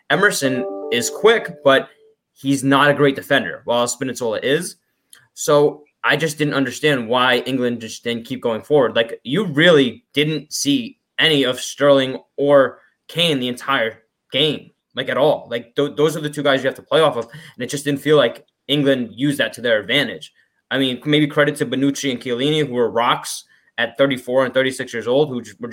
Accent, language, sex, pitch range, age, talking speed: American, English, male, 125-145 Hz, 20-39, 195 wpm